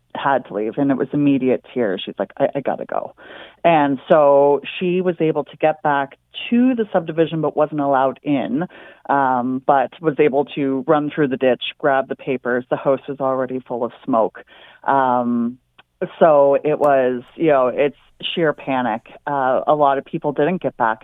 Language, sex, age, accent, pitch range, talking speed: English, female, 30-49, American, 130-150 Hz, 185 wpm